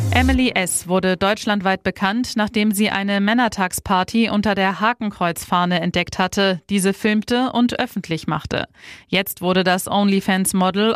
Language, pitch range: German, 185-215 Hz